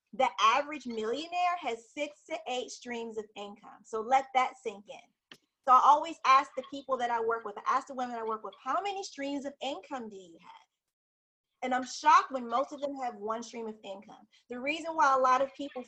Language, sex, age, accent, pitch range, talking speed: English, female, 30-49, American, 230-290 Hz, 225 wpm